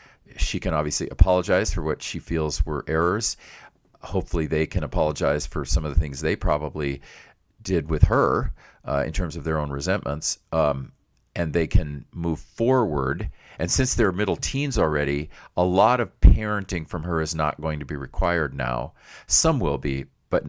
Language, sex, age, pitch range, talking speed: English, male, 40-59, 75-90 Hz, 175 wpm